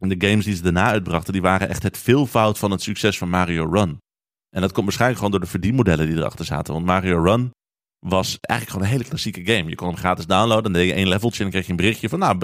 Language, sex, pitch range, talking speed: Dutch, male, 90-125 Hz, 275 wpm